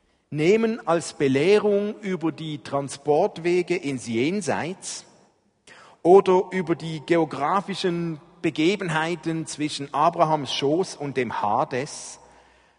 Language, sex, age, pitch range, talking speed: German, male, 50-69, 130-170 Hz, 90 wpm